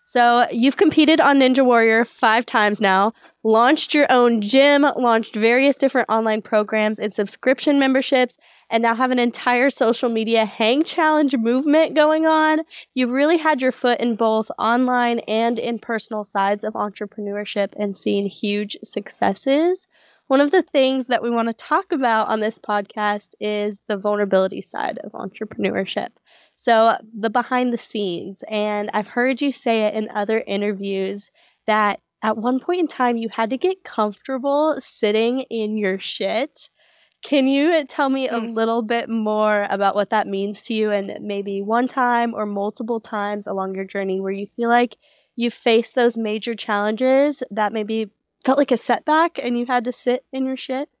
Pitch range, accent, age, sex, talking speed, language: 210-265 Hz, American, 10-29, female, 170 wpm, English